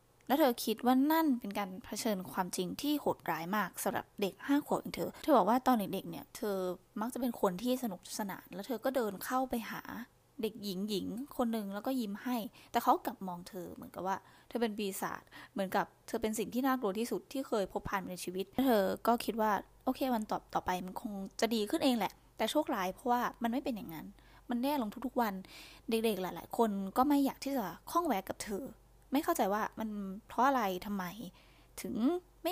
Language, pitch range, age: Thai, 200-255 Hz, 10-29